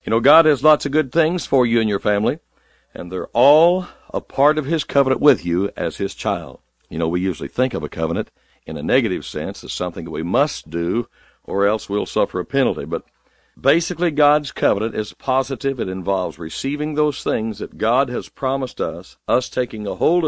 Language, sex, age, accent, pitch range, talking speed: English, male, 60-79, American, 95-140 Hz, 205 wpm